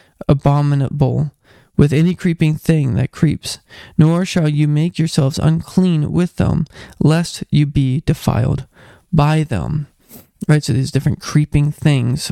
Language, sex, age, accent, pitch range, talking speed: English, male, 20-39, American, 135-160 Hz, 130 wpm